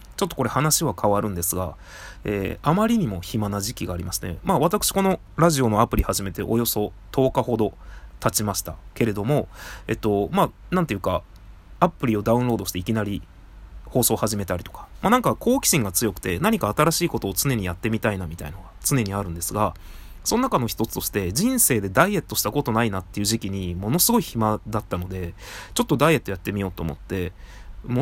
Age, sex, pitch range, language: 20-39, male, 95-130 Hz, Japanese